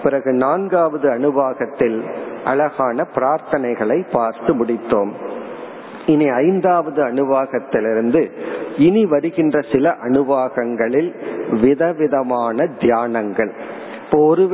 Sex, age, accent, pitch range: male, 50-69, native, 130-165 Hz